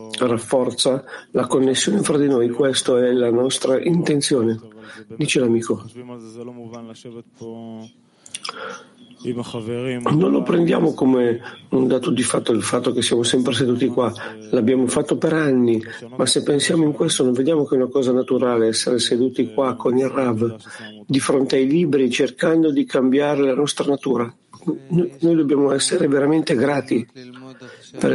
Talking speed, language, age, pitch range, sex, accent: 140 wpm, Italian, 50-69, 115-140 Hz, male, native